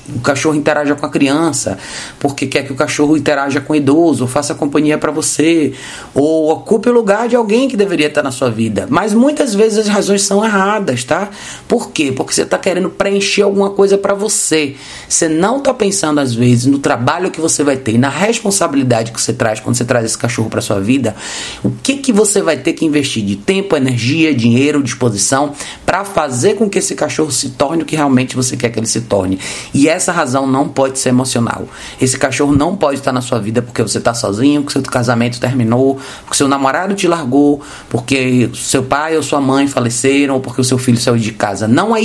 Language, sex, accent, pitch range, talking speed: Portuguese, male, Brazilian, 125-160 Hz, 215 wpm